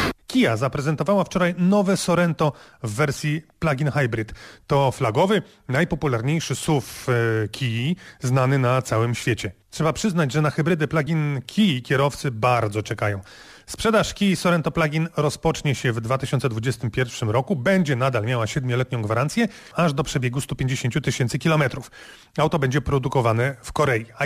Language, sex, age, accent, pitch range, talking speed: Polish, male, 30-49, native, 130-165 Hz, 135 wpm